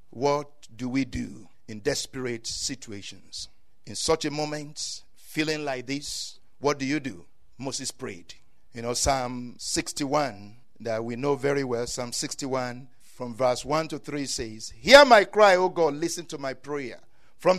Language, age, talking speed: English, 50-69, 160 wpm